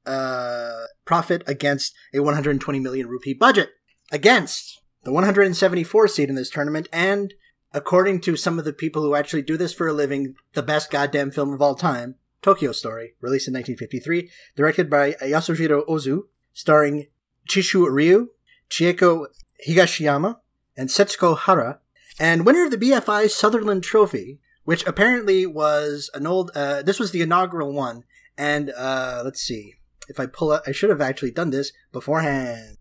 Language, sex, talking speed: English, male, 155 wpm